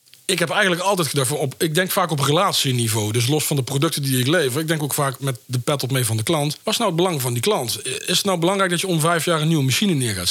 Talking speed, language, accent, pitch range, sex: 305 wpm, Dutch, Dutch, 125-165 Hz, male